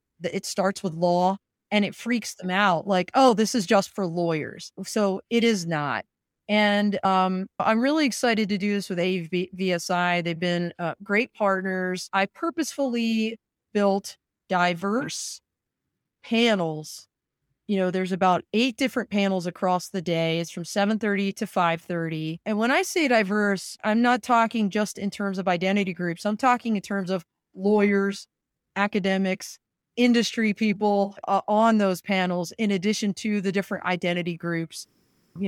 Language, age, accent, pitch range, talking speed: English, 30-49, American, 180-210 Hz, 150 wpm